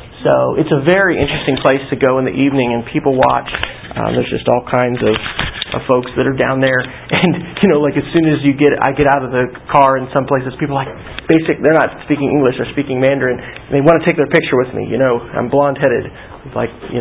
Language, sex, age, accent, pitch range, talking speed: English, male, 40-59, American, 130-155 Hz, 245 wpm